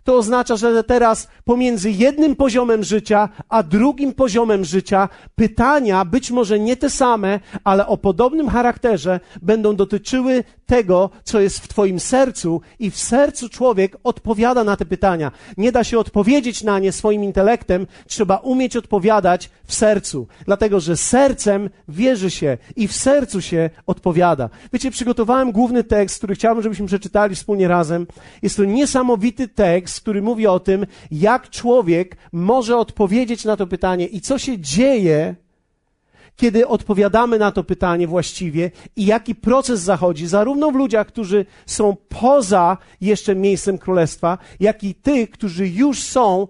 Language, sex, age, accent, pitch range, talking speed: Polish, male, 40-59, native, 185-240 Hz, 150 wpm